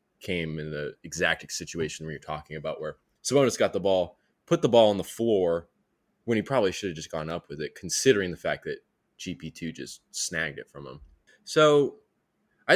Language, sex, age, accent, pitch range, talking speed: English, male, 20-39, American, 90-115 Hz, 200 wpm